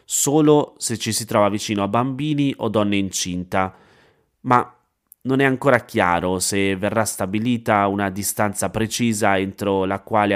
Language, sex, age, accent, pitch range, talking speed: Italian, male, 30-49, native, 95-115 Hz, 145 wpm